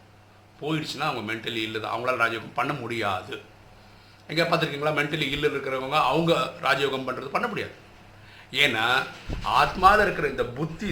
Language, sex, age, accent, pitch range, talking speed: Tamil, male, 50-69, native, 105-165 Hz, 130 wpm